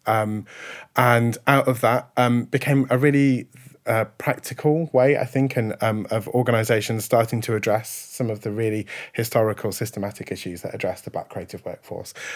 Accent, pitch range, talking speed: British, 105-125 Hz, 165 wpm